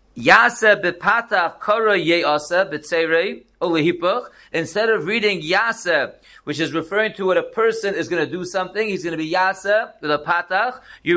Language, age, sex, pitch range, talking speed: English, 40-59, male, 180-225 Hz, 155 wpm